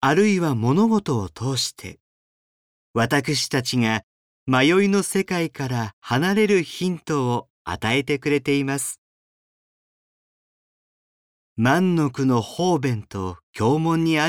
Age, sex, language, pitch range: 40-59, male, Japanese, 105-150 Hz